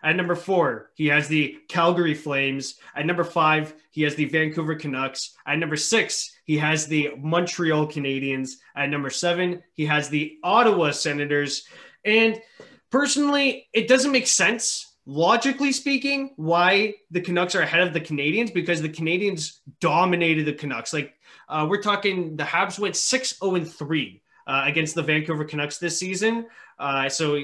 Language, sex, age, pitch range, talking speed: English, male, 20-39, 145-195 Hz, 155 wpm